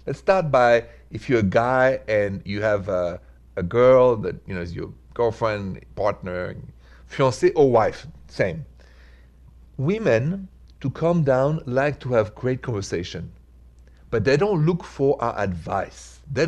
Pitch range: 95-135 Hz